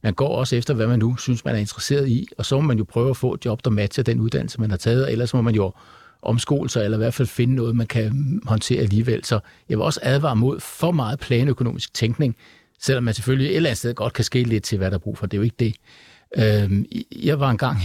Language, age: Danish, 60-79